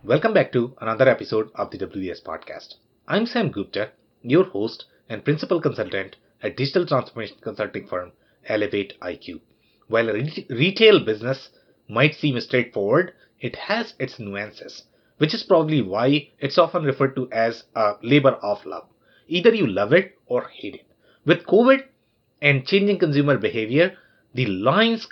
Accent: Indian